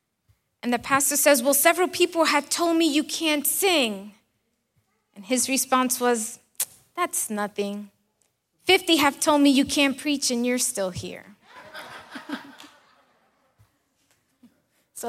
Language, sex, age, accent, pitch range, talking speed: Spanish, female, 20-39, American, 205-260 Hz, 125 wpm